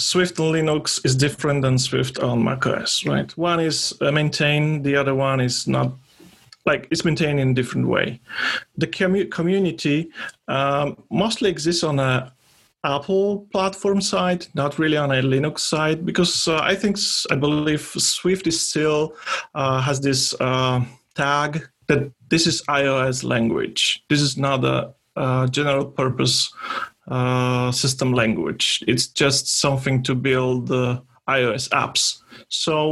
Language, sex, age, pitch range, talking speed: English, male, 30-49, 130-160 Hz, 145 wpm